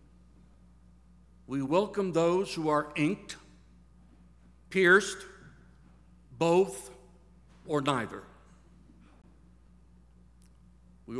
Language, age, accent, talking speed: English, 60-79, American, 60 wpm